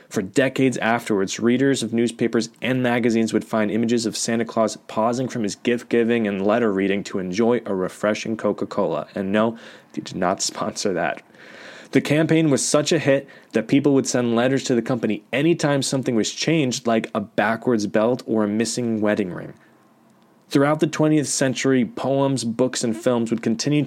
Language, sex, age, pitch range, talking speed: English, male, 20-39, 110-130 Hz, 175 wpm